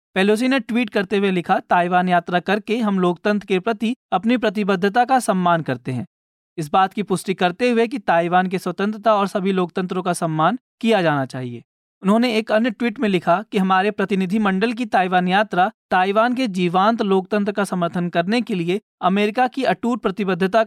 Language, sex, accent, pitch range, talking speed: Hindi, male, native, 180-220 Hz, 180 wpm